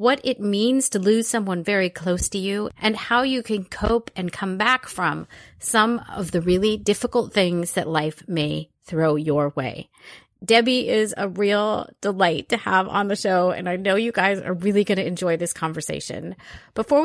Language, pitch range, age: English, 175-230 Hz, 30-49